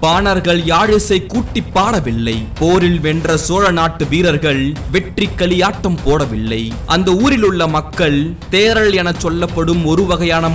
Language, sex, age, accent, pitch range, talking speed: Tamil, male, 20-39, native, 140-195 Hz, 115 wpm